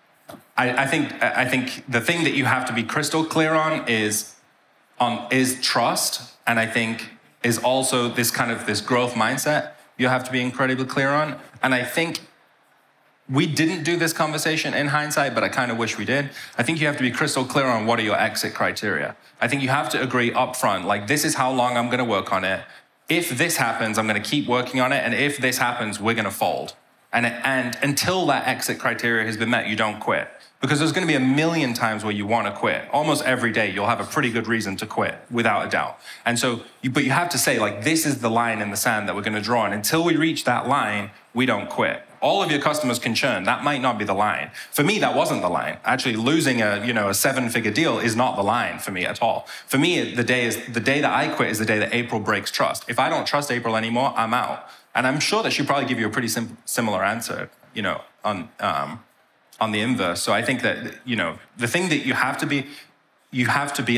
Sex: male